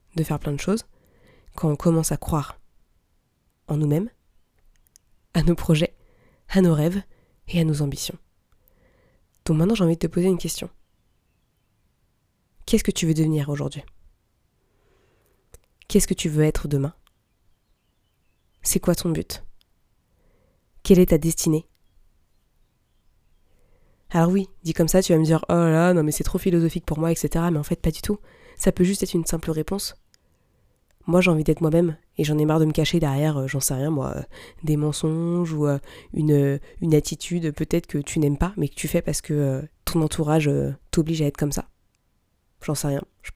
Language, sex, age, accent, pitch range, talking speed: French, female, 20-39, French, 145-170 Hz, 190 wpm